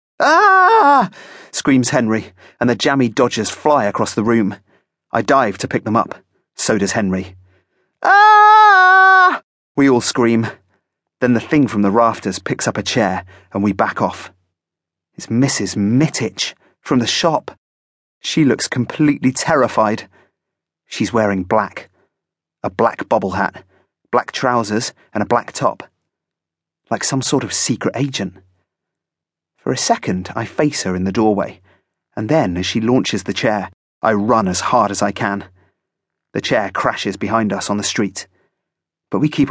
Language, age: English, 30-49